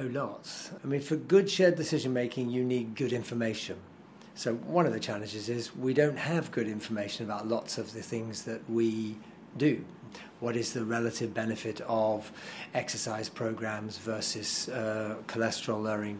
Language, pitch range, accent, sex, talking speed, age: English, 110-130 Hz, British, male, 160 wpm, 40-59